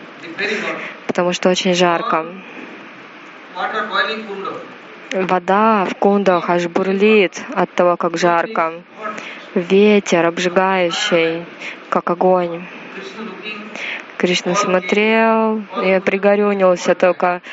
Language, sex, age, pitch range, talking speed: Russian, female, 20-39, 180-210 Hz, 75 wpm